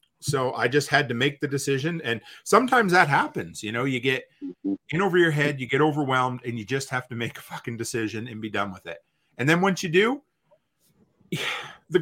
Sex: male